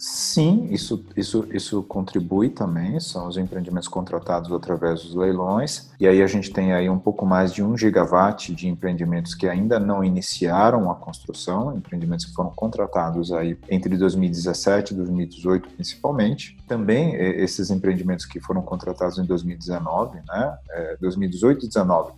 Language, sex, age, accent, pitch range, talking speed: Portuguese, male, 40-59, Brazilian, 95-115 Hz, 150 wpm